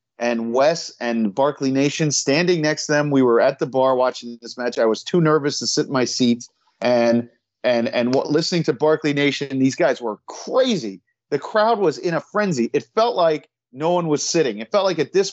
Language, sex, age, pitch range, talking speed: English, male, 40-59, 130-180 Hz, 220 wpm